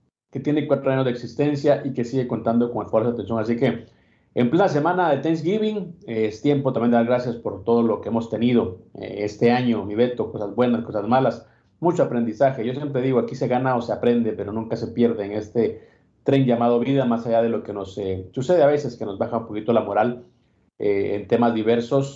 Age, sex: 40-59, male